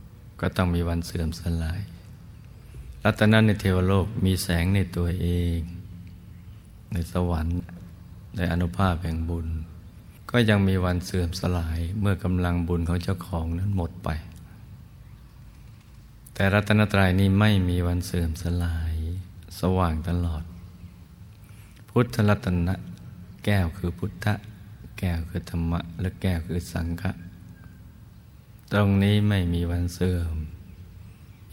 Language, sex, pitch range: Thai, male, 85-105 Hz